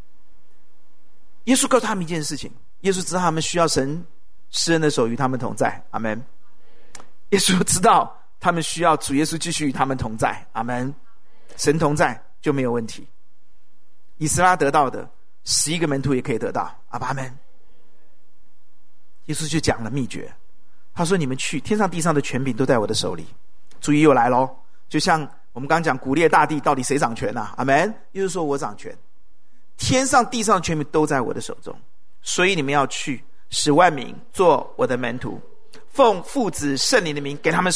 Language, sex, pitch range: Chinese, male, 140-200 Hz